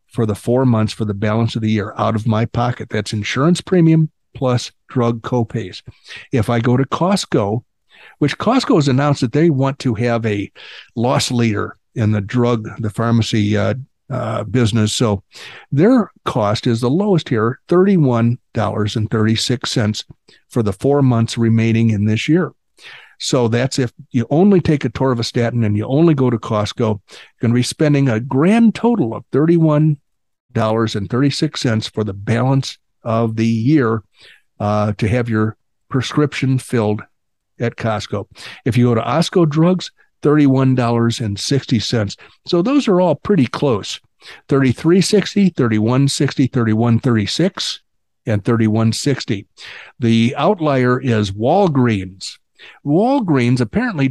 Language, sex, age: English, male, 60-79